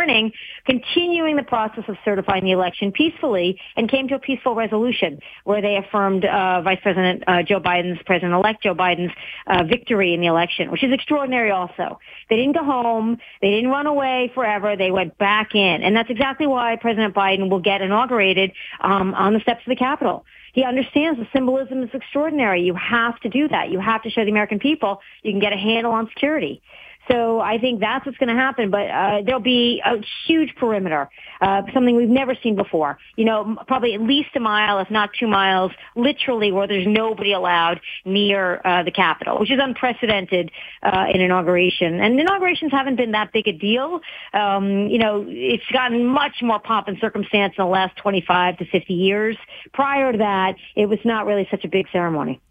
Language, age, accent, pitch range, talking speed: English, 40-59, American, 195-250 Hz, 200 wpm